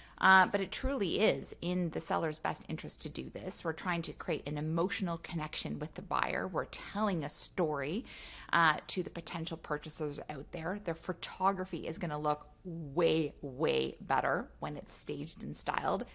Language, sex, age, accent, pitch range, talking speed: English, female, 30-49, American, 160-210 Hz, 175 wpm